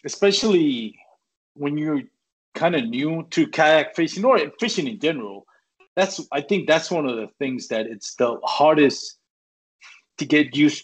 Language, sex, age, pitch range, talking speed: English, male, 30-49, 110-150 Hz, 155 wpm